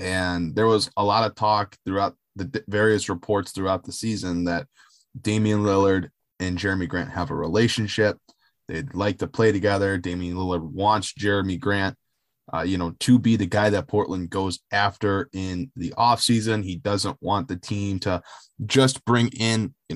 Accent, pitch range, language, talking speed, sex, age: American, 95-120 Hz, English, 175 wpm, male, 20-39